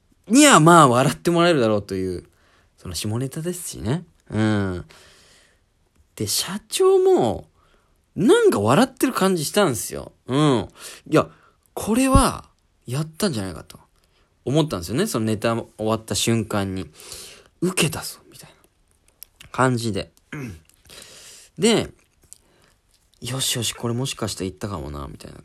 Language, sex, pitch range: Japanese, male, 95-155 Hz